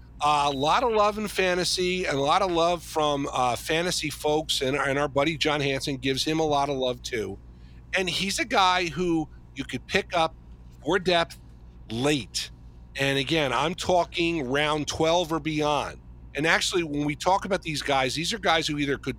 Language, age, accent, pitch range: English, 50-69, American, 120-165 Hz